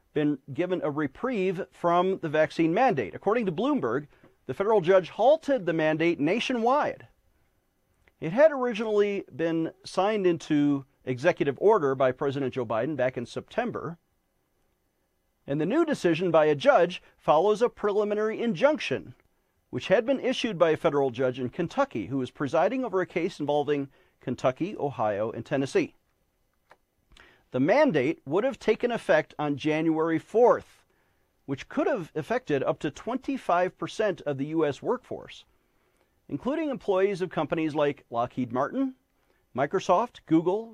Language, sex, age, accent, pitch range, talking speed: English, male, 40-59, American, 145-215 Hz, 140 wpm